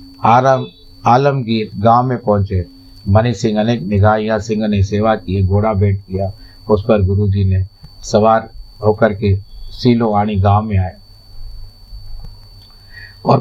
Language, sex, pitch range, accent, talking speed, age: Hindi, male, 100-120 Hz, native, 115 wpm, 50-69